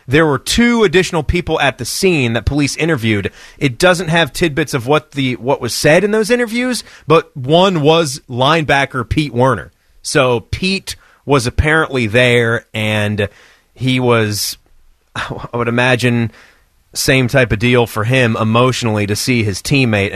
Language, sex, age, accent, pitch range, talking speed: English, male, 30-49, American, 110-140 Hz, 155 wpm